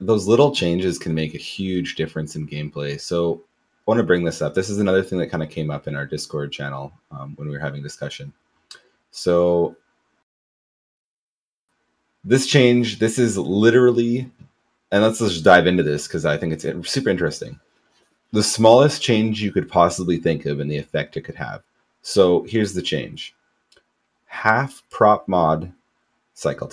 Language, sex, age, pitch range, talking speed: English, male, 30-49, 75-100 Hz, 170 wpm